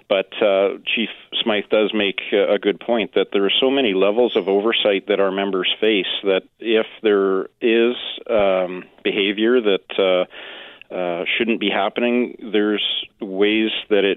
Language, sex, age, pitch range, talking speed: English, male, 40-59, 95-105 Hz, 150 wpm